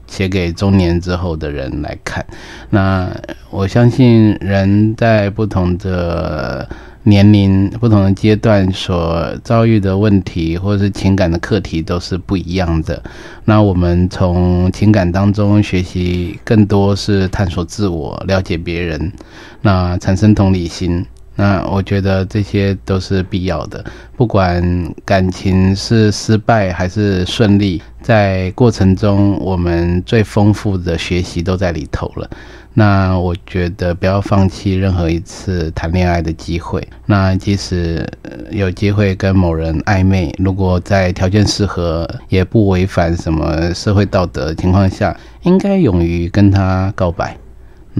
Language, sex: Chinese, male